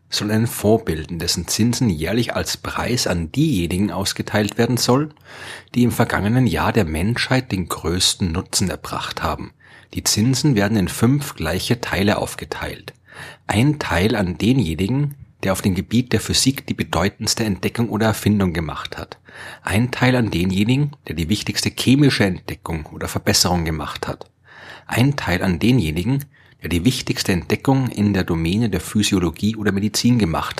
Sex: male